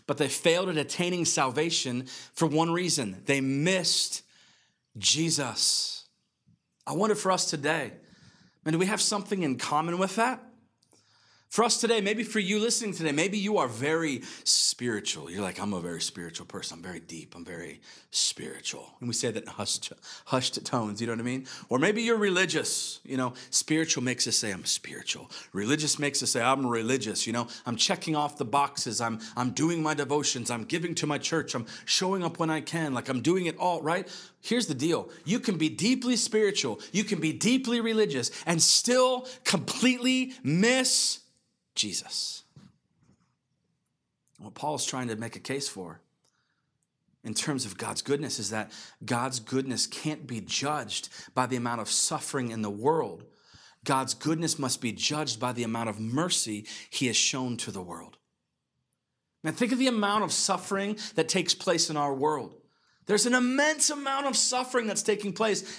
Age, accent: 30-49, American